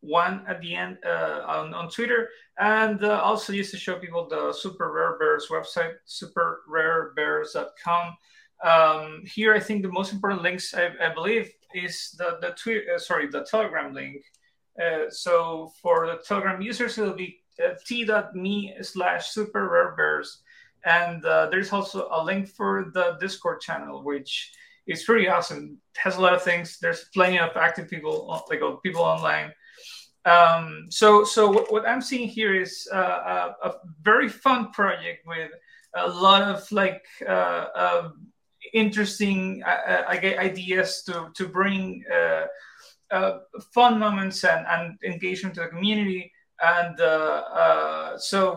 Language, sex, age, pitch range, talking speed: English, male, 30-49, 165-210 Hz, 160 wpm